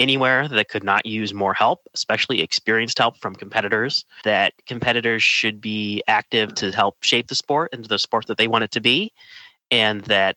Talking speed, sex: 190 wpm, male